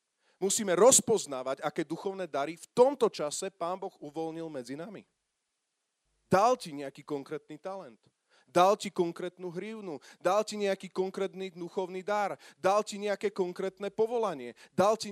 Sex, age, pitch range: male, 30-49, 155-210 Hz